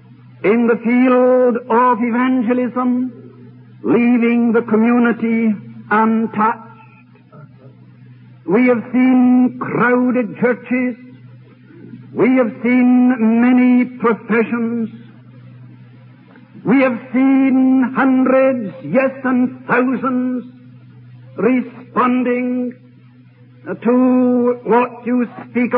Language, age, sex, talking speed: English, 60-79, male, 70 wpm